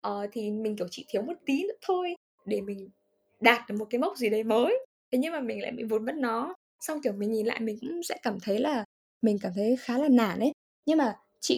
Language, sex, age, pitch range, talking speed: Vietnamese, female, 10-29, 205-290 Hz, 260 wpm